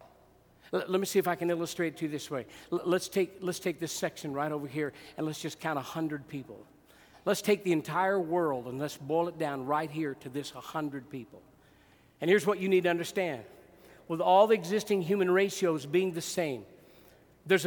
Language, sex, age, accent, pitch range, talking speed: English, male, 50-69, American, 175-235 Hz, 200 wpm